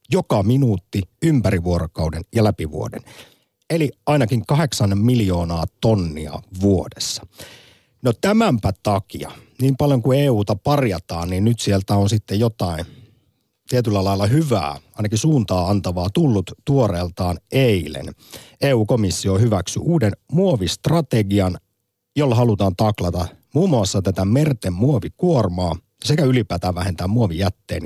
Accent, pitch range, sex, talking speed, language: native, 90-125 Hz, male, 110 wpm, Finnish